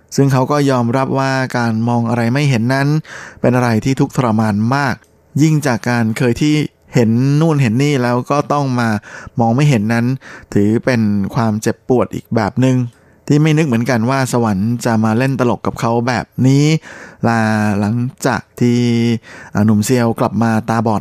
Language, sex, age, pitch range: Thai, male, 20-39, 115-135 Hz